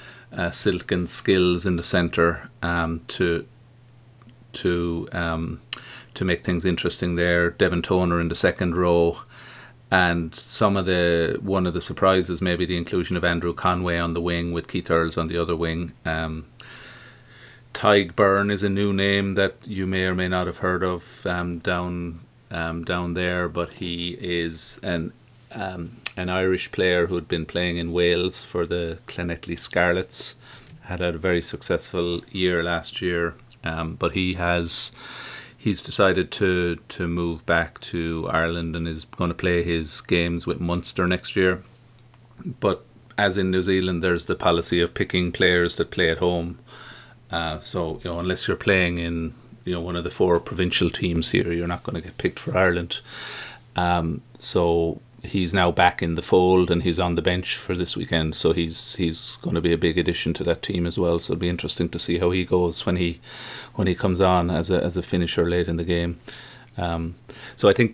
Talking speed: 190 wpm